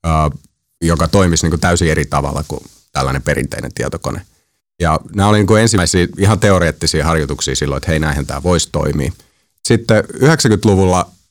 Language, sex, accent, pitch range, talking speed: Finnish, male, native, 75-95 Hz, 155 wpm